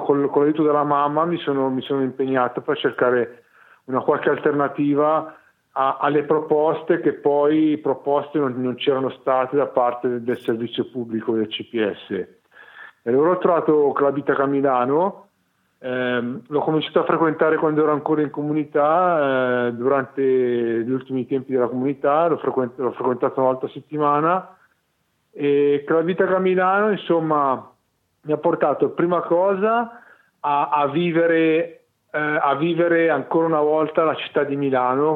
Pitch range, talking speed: 130-165 Hz, 140 wpm